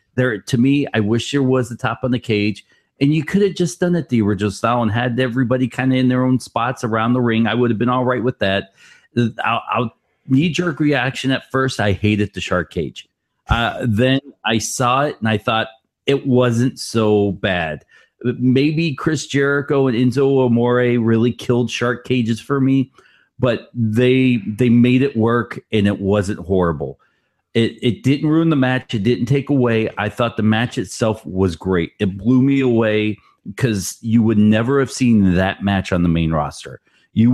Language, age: English, 40-59